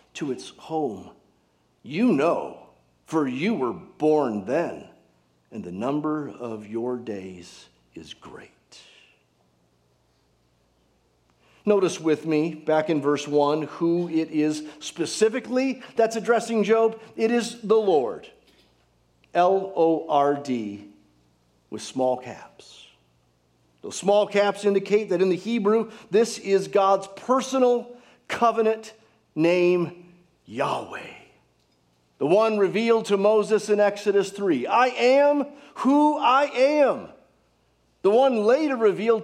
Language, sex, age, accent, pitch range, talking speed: English, male, 50-69, American, 140-225 Hz, 115 wpm